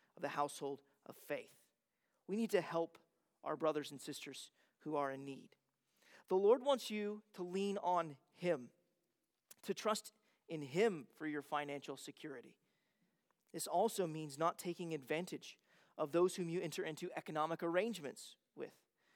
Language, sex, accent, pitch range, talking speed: English, male, American, 155-200 Hz, 150 wpm